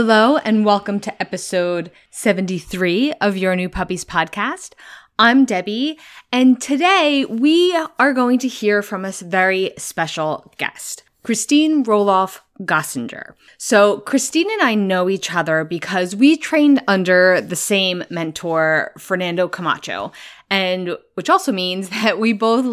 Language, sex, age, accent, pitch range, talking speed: English, female, 20-39, American, 185-255 Hz, 135 wpm